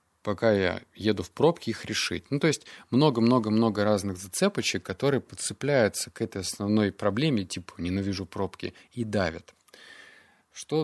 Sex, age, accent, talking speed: male, 20-39, native, 140 wpm